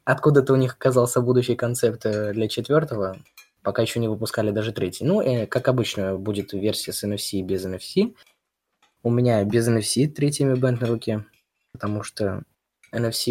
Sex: male